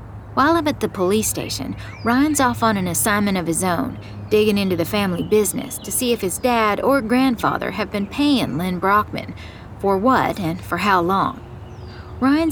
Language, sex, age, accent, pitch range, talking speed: English, female, 40-59, American, 155-240 Hz, 180 wpm